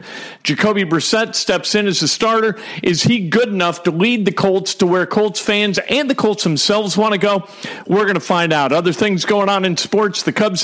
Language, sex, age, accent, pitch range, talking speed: English, male, 50-69, American, 185-225 Hz, 220 wpm